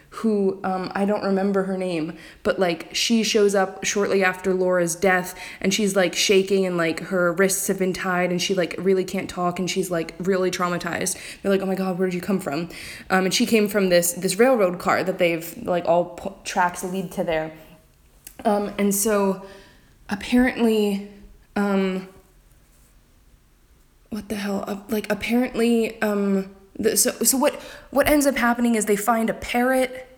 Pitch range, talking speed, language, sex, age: 180-220 Hz, 175 wpm, English, female, 20-39